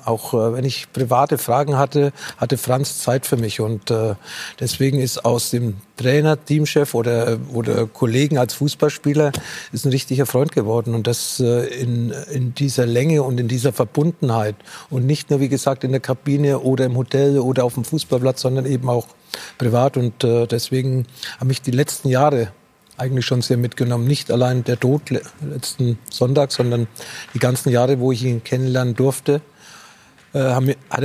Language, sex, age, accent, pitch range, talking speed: German, male, 50-69, German, 125-140 Hz, 170 wpm